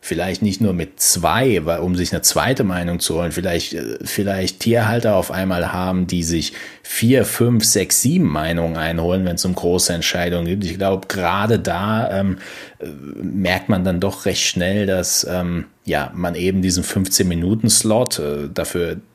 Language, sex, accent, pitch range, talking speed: German, male, German, 85-100 Hz, 170 wpm